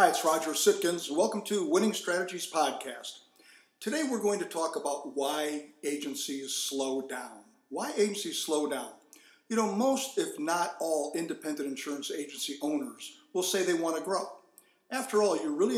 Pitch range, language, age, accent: 145-215 Hz, English, 50-69, American